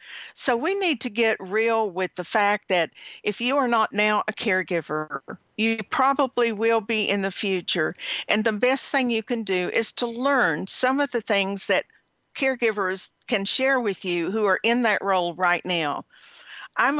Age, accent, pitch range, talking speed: 50-69, American, 185-230 Hz, 185 wpm